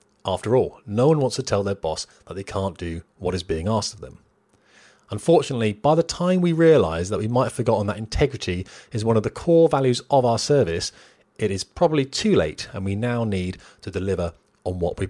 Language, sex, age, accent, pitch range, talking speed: English, male, 30-49, British, 95-130 Hz, 220 wpm